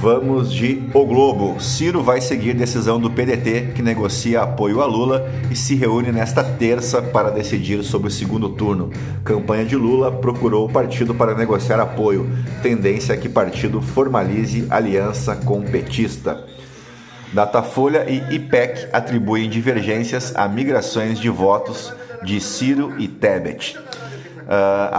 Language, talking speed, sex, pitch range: Portuguese, 140 wpm, male, 105-130 Hz